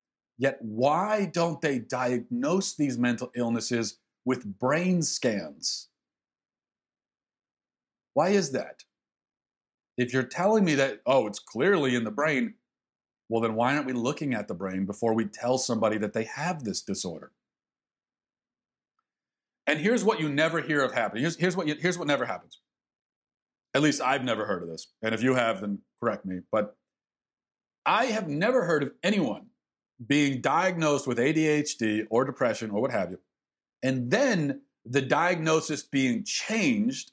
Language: English